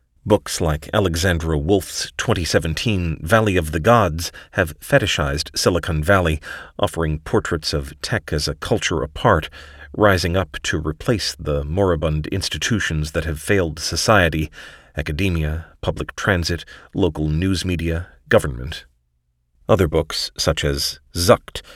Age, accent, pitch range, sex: 40-59, American, 75-95 Hz, male